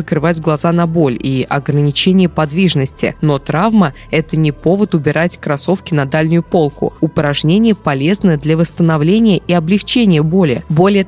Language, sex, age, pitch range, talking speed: Russian, female, 20-39, 155-190 Hz, 135 wpm